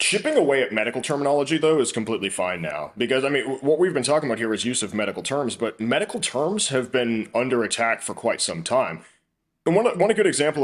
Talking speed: 235 wpm